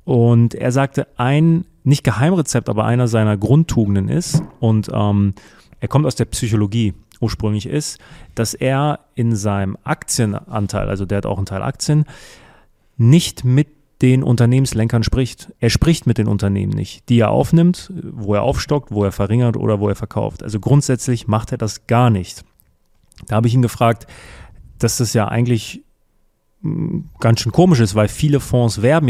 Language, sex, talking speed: German, male, 165 wpm